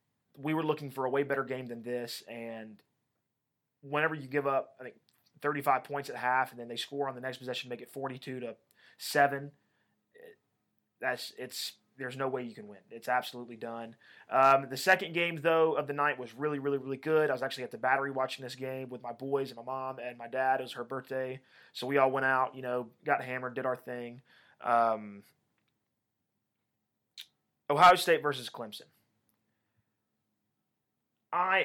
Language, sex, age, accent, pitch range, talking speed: English, male, 20-39, American, 120-145 Hz, 185 wpm